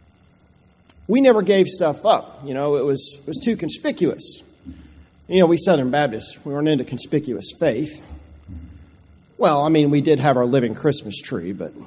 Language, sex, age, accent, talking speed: English, male, 40-59, American, 170 wpm